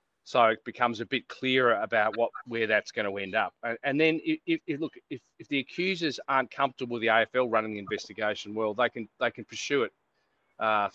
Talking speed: 215 wpm